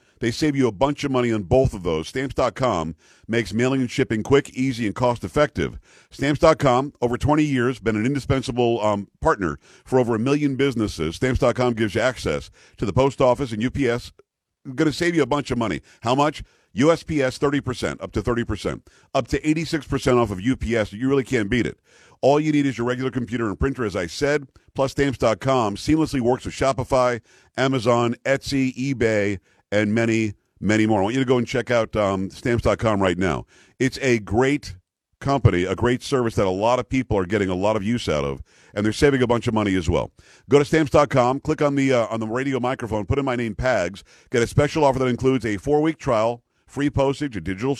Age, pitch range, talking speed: 50-69, 110-135 Hz, 205 wpm